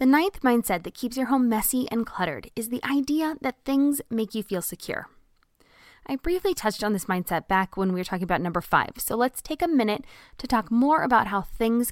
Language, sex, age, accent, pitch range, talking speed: English, female, 20-39, American, 195-270 Hz, 220 wpm